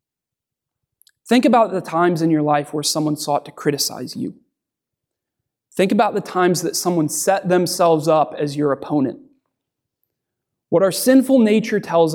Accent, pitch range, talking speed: American, 150-190 Hz, 150 wpm